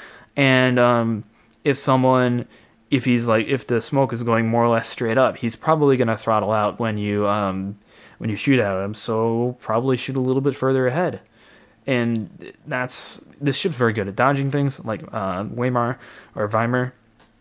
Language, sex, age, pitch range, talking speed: English, male, 20-39, 110-135 Hz, 185 wpm